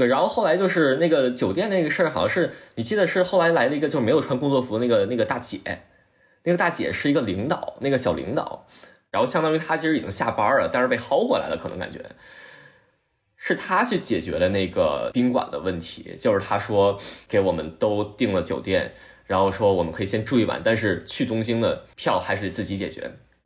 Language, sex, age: Chinese, male, 20-39